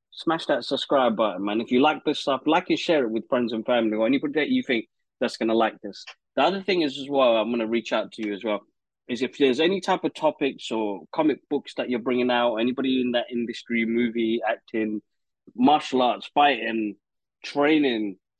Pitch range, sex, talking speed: 115-145 Hz, male, 220 wpm